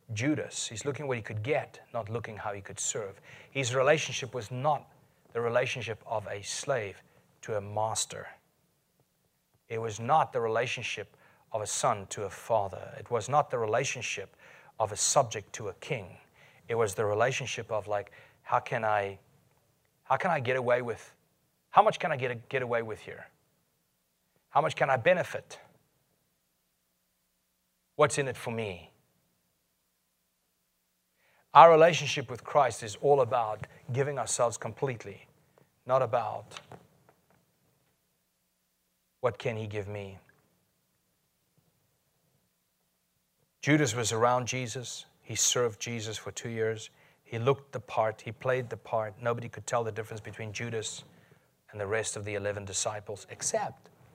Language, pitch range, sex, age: English, 105-135 Hz, male, 30-49